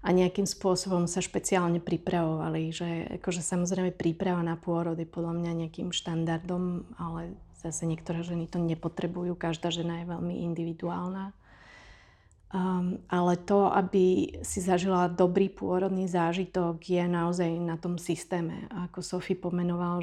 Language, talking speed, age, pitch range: Slovak, 140 wpm, 30-49, 170-185 Hz